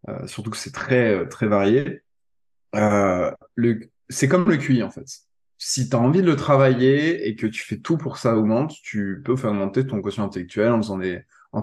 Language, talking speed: French, 205 wpm